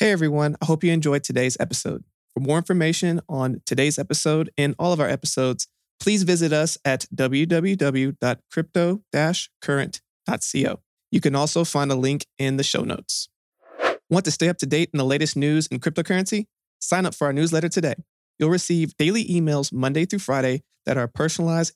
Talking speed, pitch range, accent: 170 wpm, 125-155 Hz, American